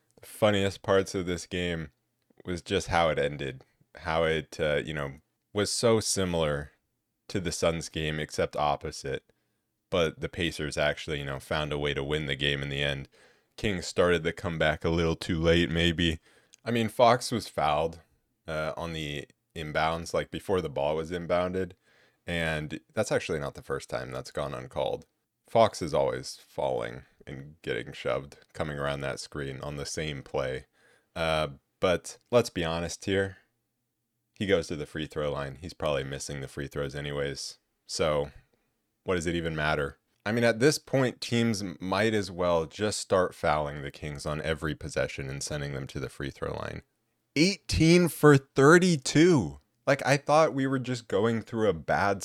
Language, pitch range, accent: English, 75-105 Hz, American